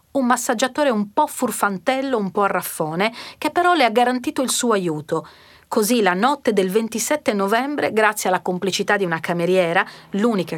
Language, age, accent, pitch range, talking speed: Italian, 40-59, native, 175-240 Hz, 170 wpm